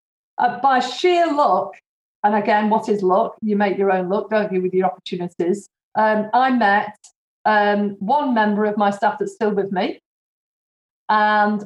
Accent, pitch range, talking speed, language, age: British, 205-270 Hz, 170 wpm, English, 40-59